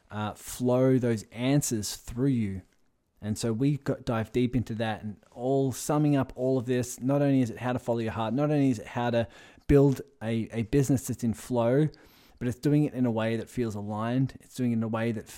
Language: English